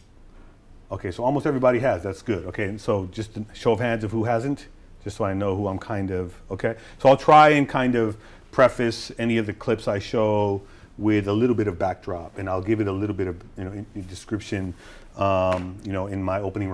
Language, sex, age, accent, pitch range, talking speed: English, male, 40-59, American, 100-115 Hz, 235 wpm